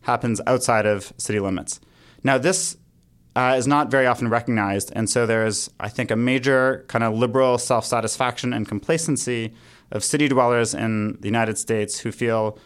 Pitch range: 110-135 Hz